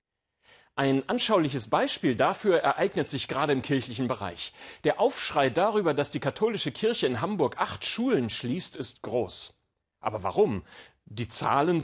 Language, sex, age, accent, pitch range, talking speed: German, male, 40-59, German, 115-160 Hz, 140 wpm